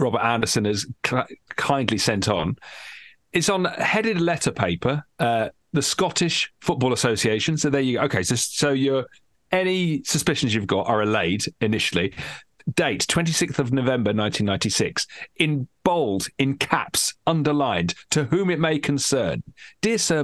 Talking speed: 140 wpm